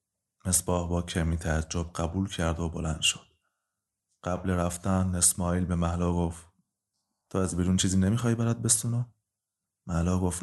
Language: Persian